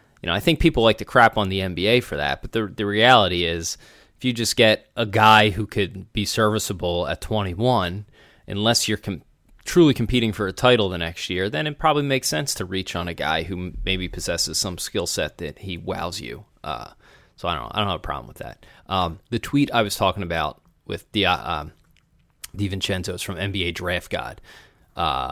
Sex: male